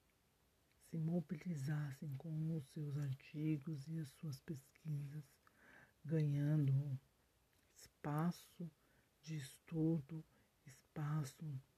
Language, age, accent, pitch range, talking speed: Portuguese, 60-79, Brazilian, 140-165 Hz, 75 wpm